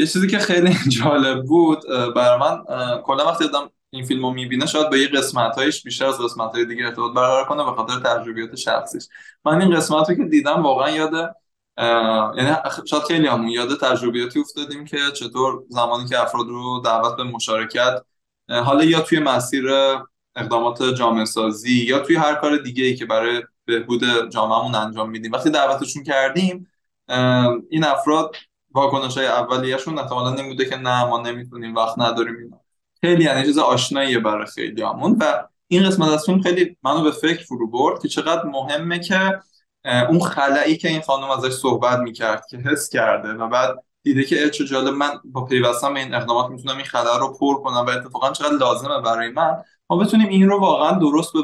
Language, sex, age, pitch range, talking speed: Persian, male, 20-39, 120-155 Hz, 170 wpm